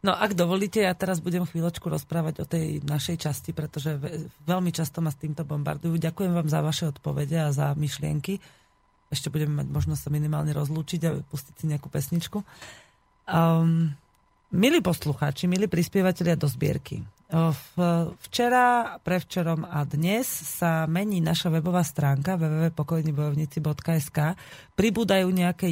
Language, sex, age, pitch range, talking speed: Slovak, female, 30-49, 155-180 Hz, 140 wpm